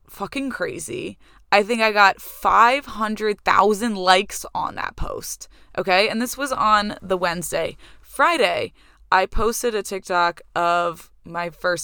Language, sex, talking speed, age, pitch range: English, female, 130 wpm, 20-39, 180-235 Hz